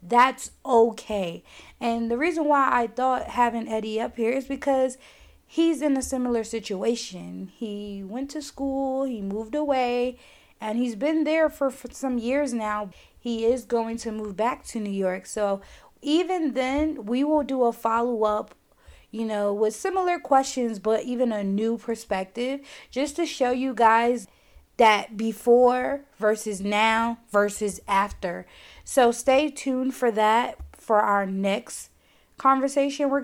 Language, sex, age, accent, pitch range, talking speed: English, female, 20-39, American, 215-270 Hz, 150 wpm